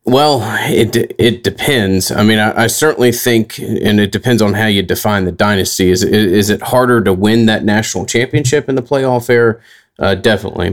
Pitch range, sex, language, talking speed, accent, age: 95-110 Hz, male, English, 190 wpm, American, 30-49